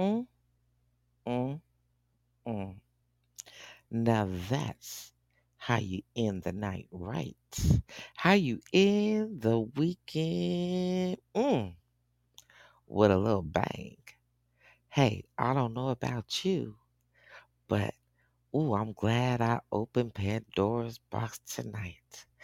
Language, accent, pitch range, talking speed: English, American, 90-135 Hz, 100 wpm